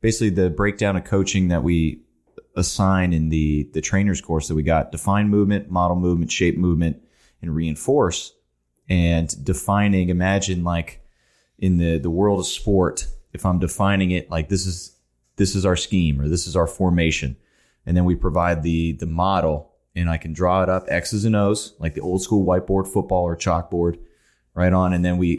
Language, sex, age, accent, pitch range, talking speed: English, male, 30-49, American, 80-95 Hz, 185 wpm